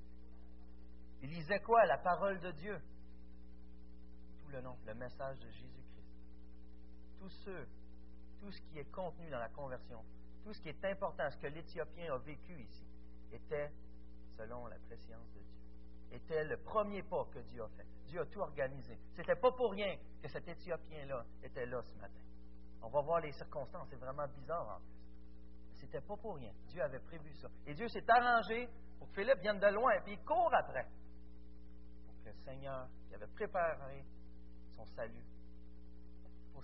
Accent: French